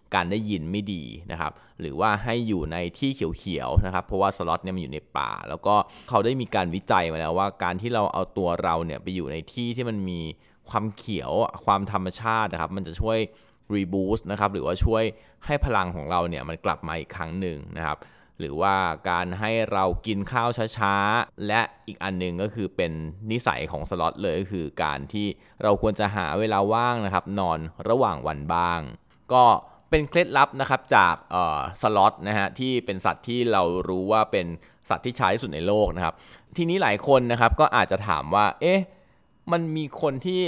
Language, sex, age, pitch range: Thai, male, 20-39, 95-120 Hz